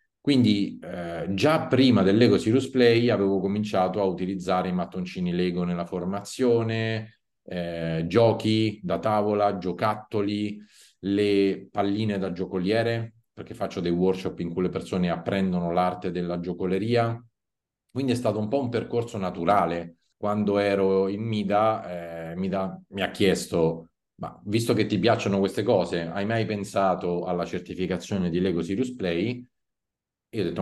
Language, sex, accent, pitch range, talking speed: Italian, male, native, 90-110 Hz, 145 wpm